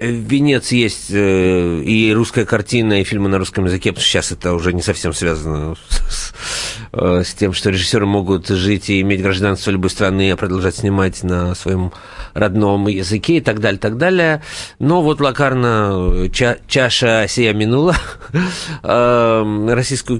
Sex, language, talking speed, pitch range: male, Russian, 150 wpm, 95-115 Hz